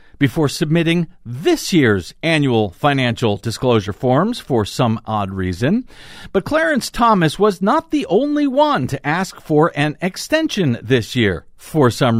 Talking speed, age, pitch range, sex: 145 wpm, 50-69, 120-195 Hz, male